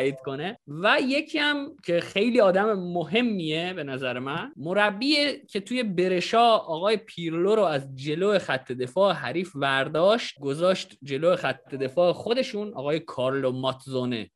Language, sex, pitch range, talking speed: Persian, male, 125-190 Hz, 130 wpm